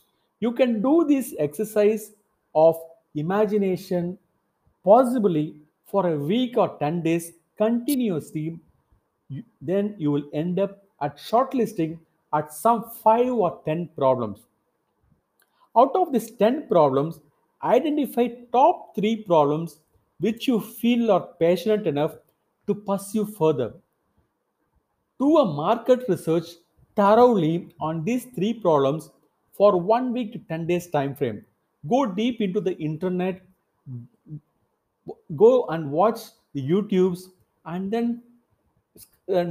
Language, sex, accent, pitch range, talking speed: English, male, Indian, 160-225 Hz, 115 wpm